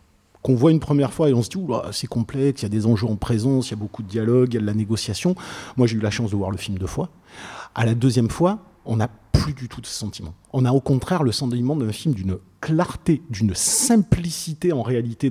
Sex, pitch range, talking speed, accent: male, 110-140 Hz, 265 wpm, French